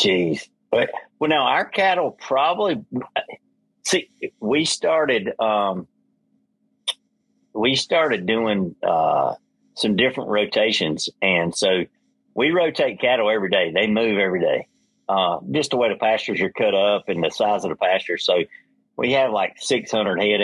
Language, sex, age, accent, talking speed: English, male, 50-69, American, 150 wpm